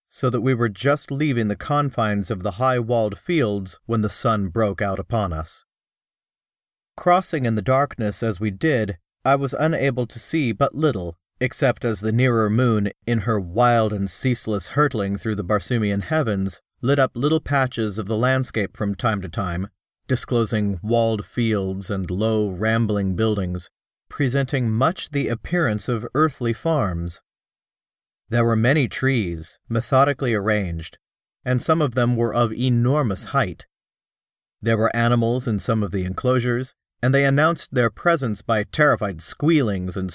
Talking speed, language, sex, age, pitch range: 155 wpm, English, male, 40-59, 105-130 Hz